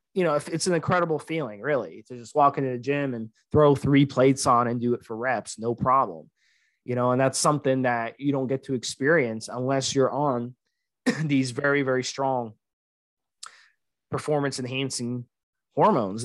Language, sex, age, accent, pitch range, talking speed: English, male, 20-39, American, 130-155 Hz, 170 wpm